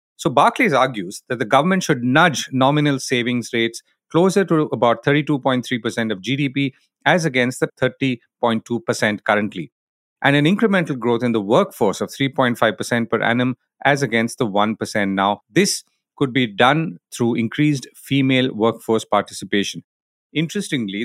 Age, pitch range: 40-59, 120-155 Hz